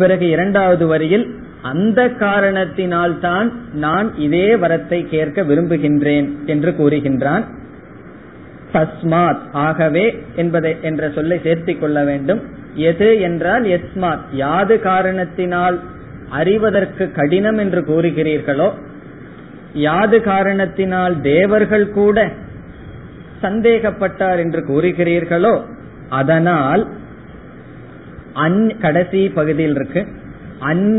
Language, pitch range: Tamil, 150-190 Hz